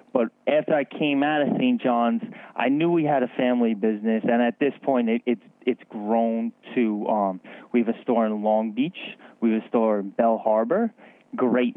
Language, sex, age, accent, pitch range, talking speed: English, male, 20-39, American, 110-175 Hz, 205 wpm